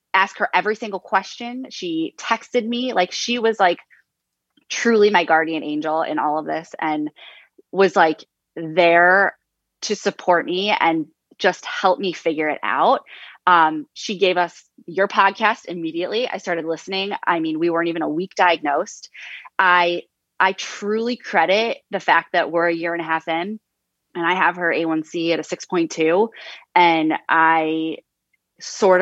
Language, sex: English, female